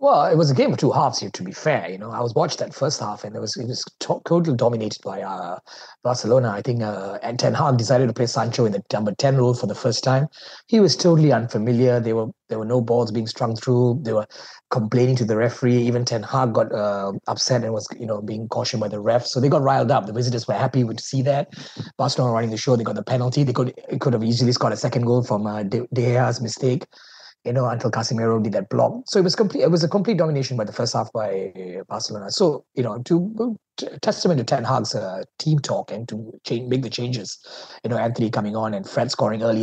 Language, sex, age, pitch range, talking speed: English, male, 30-49, 115-140 Hz, 255 wpm